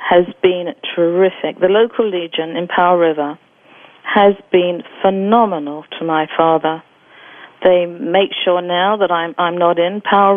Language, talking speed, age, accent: English, 145 wpm, 50-69, British